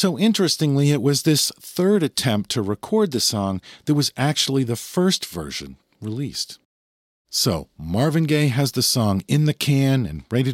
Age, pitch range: 50-69, 95-145 Hz